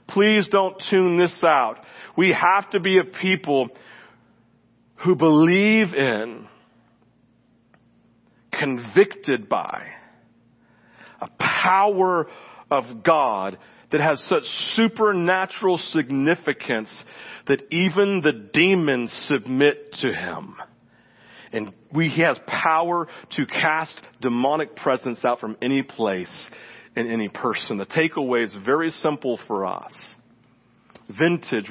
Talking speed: 105 wpm